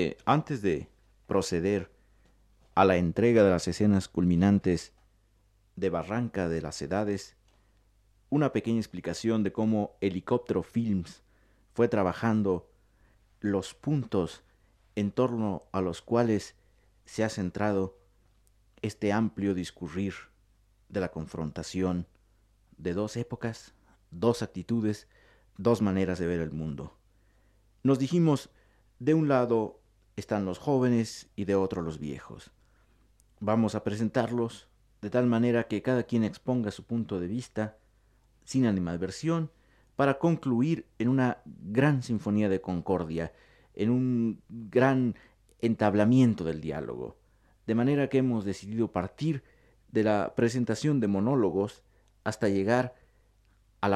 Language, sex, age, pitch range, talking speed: Spanish, male, 50-69, 95-115 Hz, 120 wpm